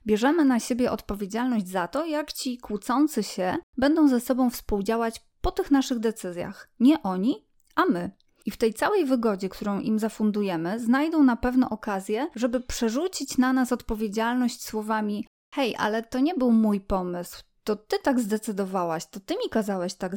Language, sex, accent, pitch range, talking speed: Polish, female, native, 200-260 Hz, 165 wpm